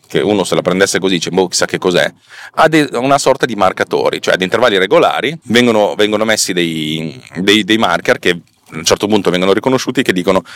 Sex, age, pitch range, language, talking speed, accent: male, 30-49, 95-130 Hz, Italian, 205 wpm, native